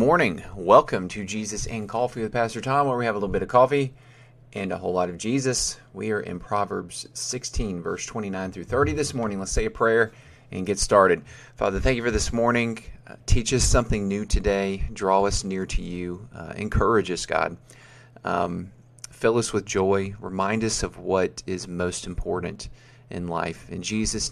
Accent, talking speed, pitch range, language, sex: American, 190 wpm, 95-120 Hz, English, male